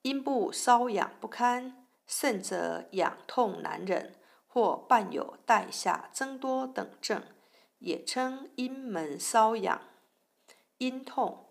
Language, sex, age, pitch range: Chinese, female, 50-69, 230-270 Hz